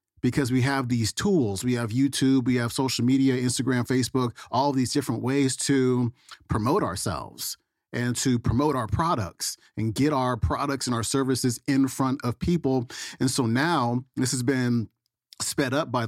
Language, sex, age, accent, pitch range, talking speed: English, male, 40-59, American, 120-135 Hz, 170 wpm